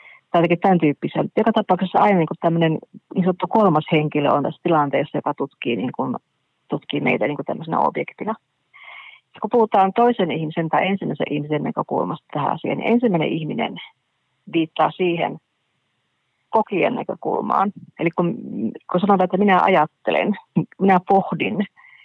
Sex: female